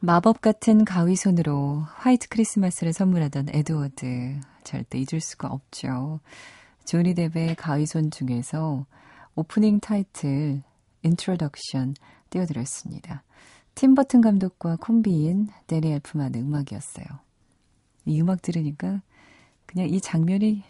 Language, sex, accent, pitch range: Korean, female, native, 140-185 Hz